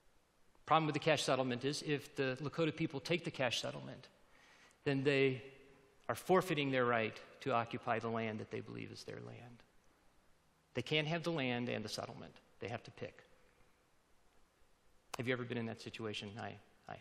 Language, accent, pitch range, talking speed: English, American, 140-185 Hz, 185 wpm